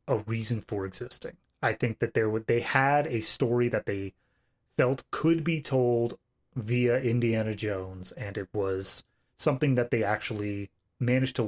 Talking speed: 160 wpm